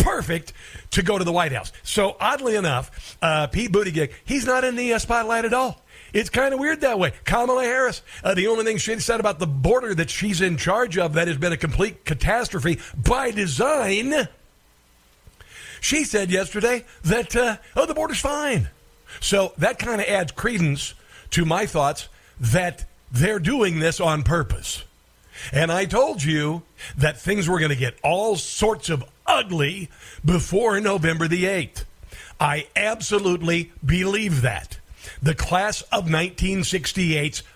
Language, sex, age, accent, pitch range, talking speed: English, male, 60-79, American, 150-210 Hz, 160 wpm